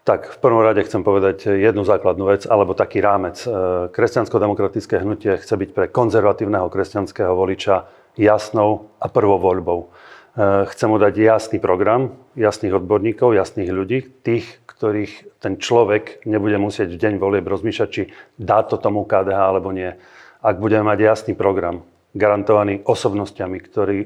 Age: 30-49